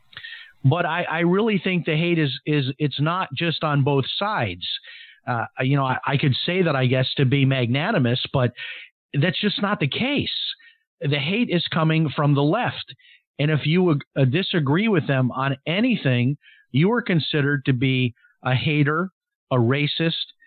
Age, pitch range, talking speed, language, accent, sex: 50-69, 135-185 Hz, 175 wpm, English, American, male